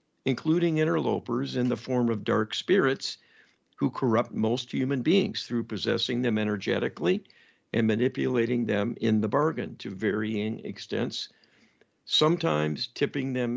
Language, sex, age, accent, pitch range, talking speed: English, male, 50-69, American, 110-135 Hz, 130 wpm